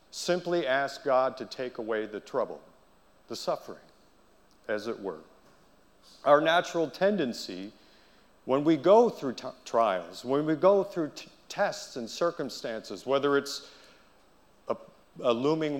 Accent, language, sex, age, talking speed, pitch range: American, English, male, 50-69, 125 wpm, 125-160 Hz